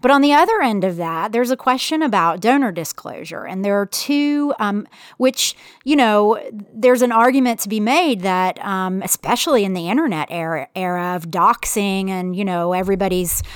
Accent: American